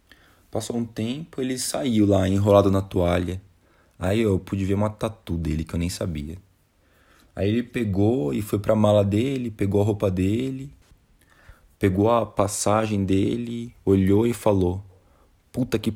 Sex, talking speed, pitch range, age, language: male, 155 wpm, 90-120 Hz, 20-39, Portuguese